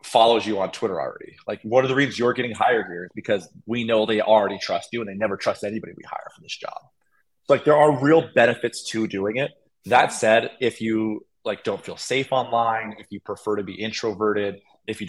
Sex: male